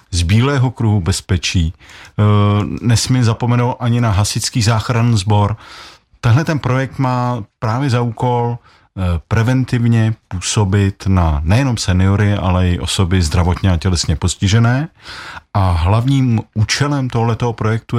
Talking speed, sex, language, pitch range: 115 wpm, male, Czech, 95-120 Hz